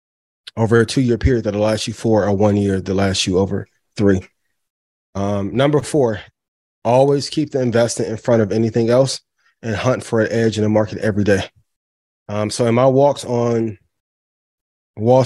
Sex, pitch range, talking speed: male, 105-125 Hz, 180 wpm